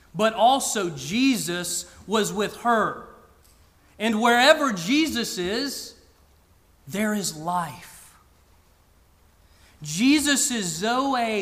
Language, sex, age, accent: English, male, 40-59, American